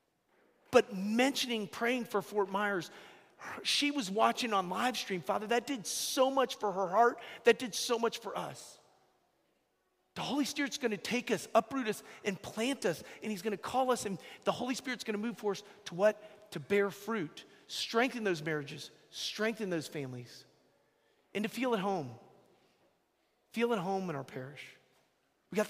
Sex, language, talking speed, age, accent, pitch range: male, English, 180 wpm, 40-59, American, 165-225 Hz